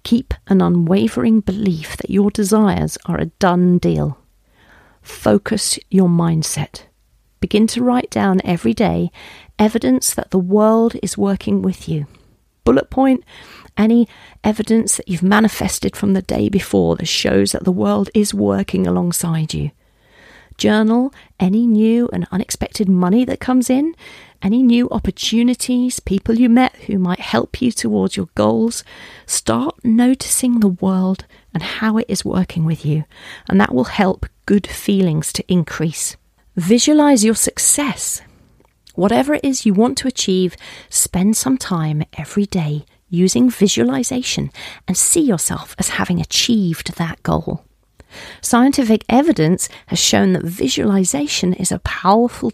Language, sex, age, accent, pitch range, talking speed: English, female, 40-59, British, 175-235 Hz, 140 wpm